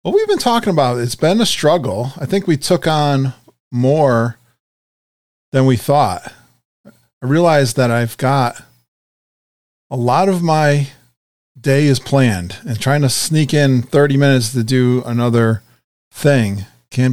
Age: 40-59